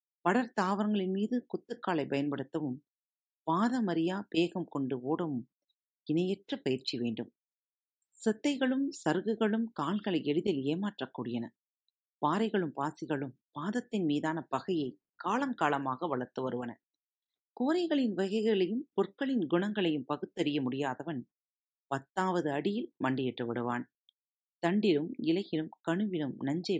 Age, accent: 40-59, native